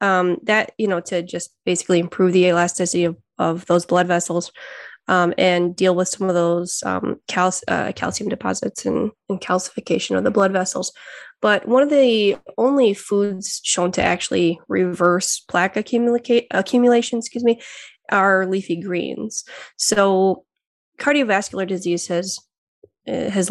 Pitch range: 175-200 Hz